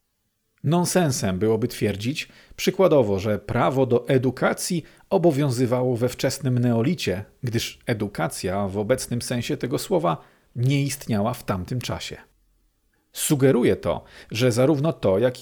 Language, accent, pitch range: Polish, native, 115-150 Hz